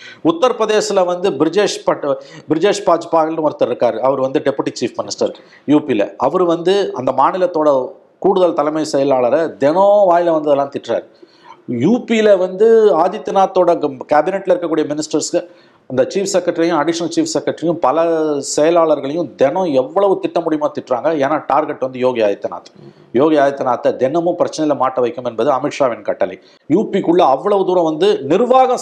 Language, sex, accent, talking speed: Tamil, male, native, 125 wpm